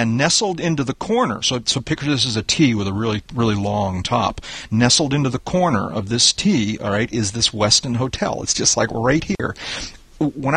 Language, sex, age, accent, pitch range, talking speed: English, male, 40-59, American, 110-145 Hz, 210 wpm